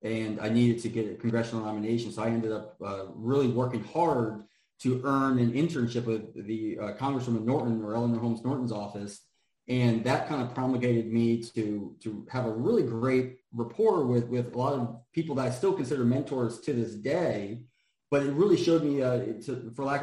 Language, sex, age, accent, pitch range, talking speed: English, male, 30-49, American, 115-130 Hz, 200 wpm